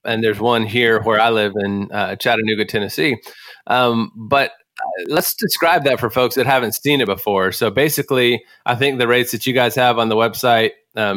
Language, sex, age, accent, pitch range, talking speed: English, male, 20-39, American, 110-125 Hz, 200 wpm